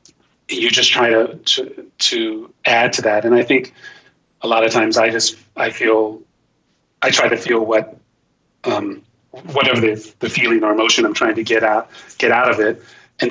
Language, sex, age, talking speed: English, male, 30-49, 190 wpm